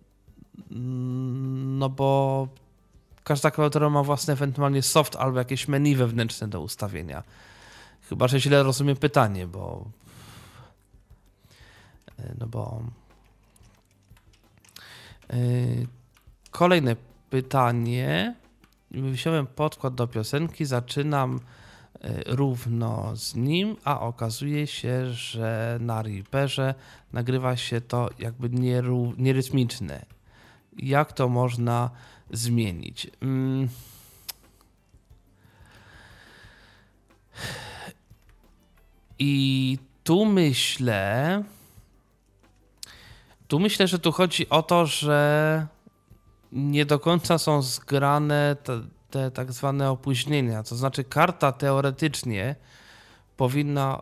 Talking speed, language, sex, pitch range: 80 wpm, Polish, male, 115-140 Hz